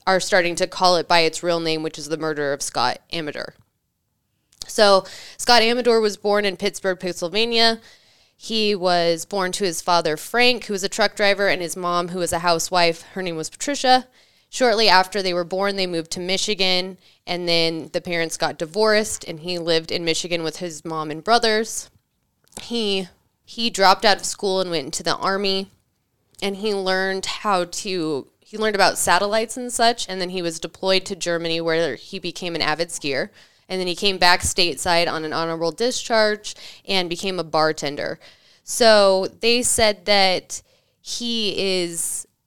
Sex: female